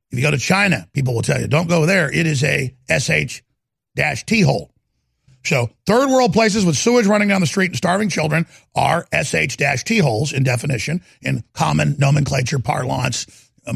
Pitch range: 130-195 Hz